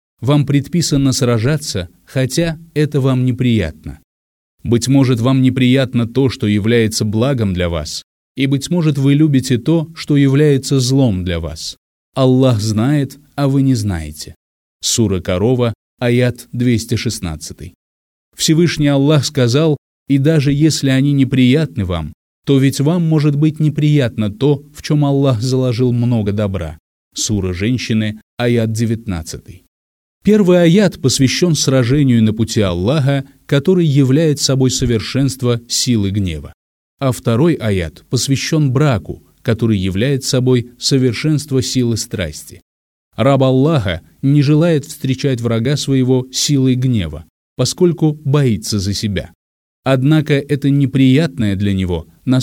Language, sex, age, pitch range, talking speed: Russian, male, 30-49, 100-140 Hz, 120 wpm